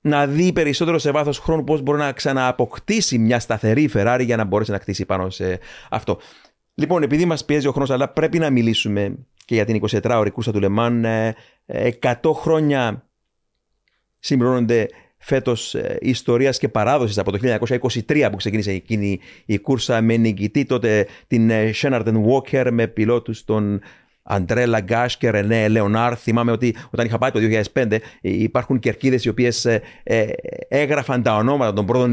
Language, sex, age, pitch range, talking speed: Greek, male, 30-49, 105-130 Hz, 155 wpm